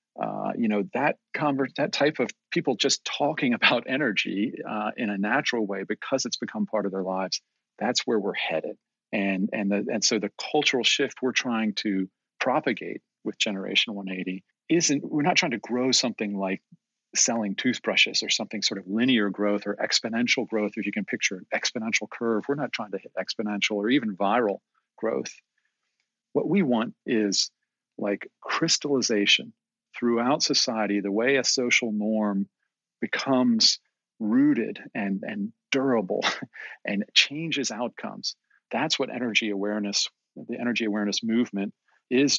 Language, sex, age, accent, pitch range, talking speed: English, male, 40-59, American, 105-135 Hz, 150 wpm